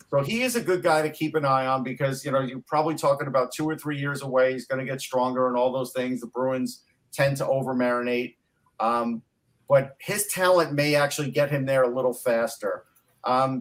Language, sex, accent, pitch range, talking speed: English, male, American, 130-150 Hz, 225 wpm